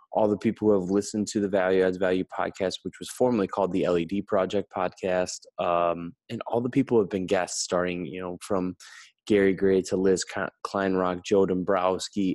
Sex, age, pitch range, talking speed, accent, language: male, 20-39, 90-100 Hz, 195 wpm, American, English